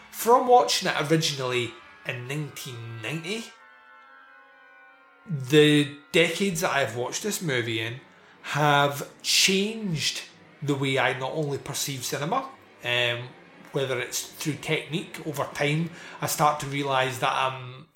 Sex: male